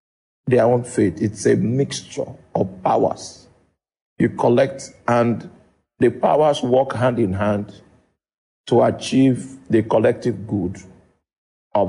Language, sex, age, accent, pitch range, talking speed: English, male, 50-69, Nigerian, 110-150 Hz, 115 wpm